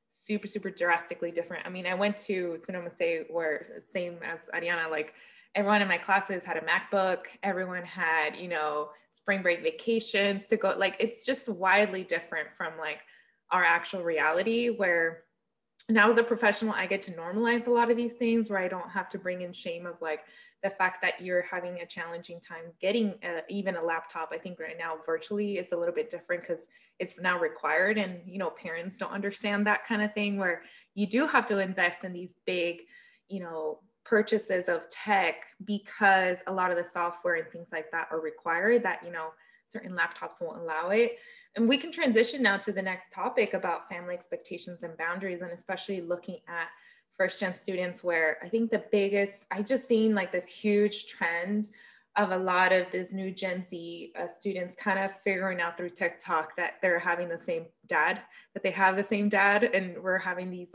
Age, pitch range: 20-39, 175-210 Hz